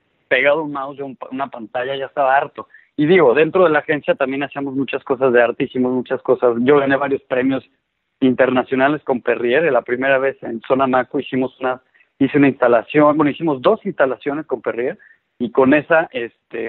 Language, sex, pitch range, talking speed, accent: Spanish, male, 130-150 Hz, 190 wpm, Mexican